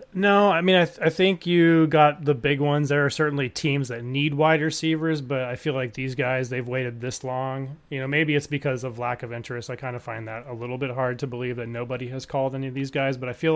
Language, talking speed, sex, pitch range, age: English, 270 wpm, male, 115-140 Hz, 30-49